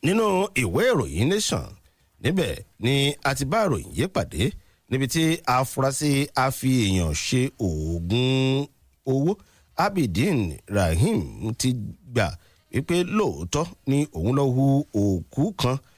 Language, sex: English, male